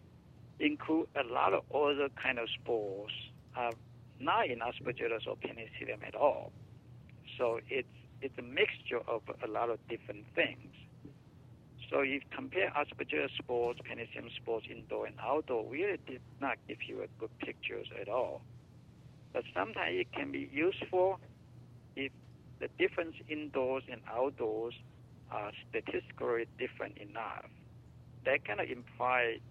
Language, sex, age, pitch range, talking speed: English, male, 60-79, 120-145 Hz, 135 wpm